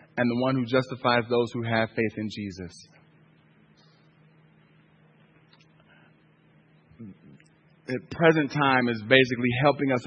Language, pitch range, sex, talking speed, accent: English, 110-130 Hz, male, 105 wpm, American